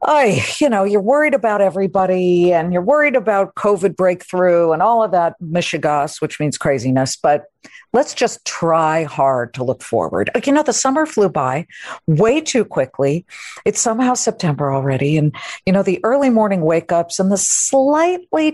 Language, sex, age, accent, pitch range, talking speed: English, female, 50-69, American, 145-200 Hz, 170 wpm